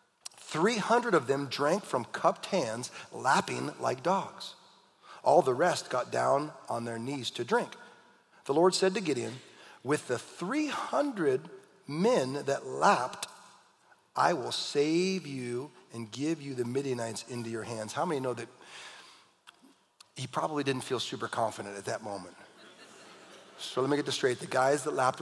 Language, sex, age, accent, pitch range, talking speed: English, male, 40-59, American, 115-150 Hz, 155 wpm